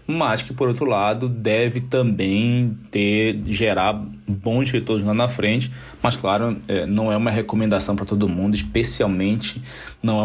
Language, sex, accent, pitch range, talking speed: Portuguese, male, Brazilian, 105-125 Hz, 150 wpm